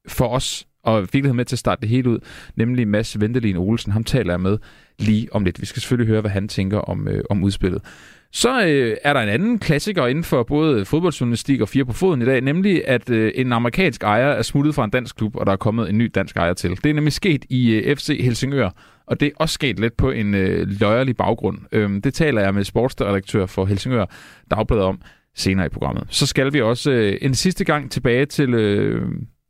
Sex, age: male, 30-49